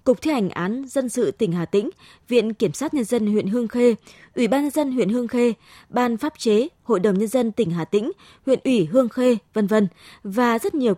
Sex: female